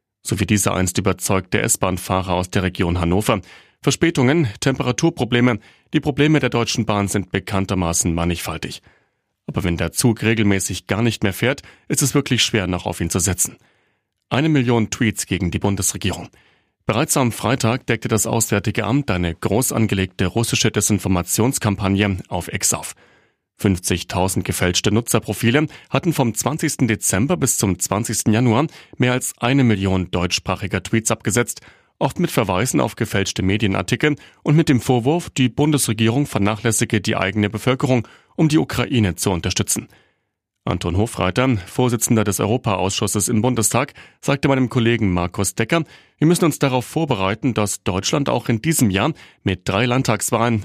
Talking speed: 145 wpm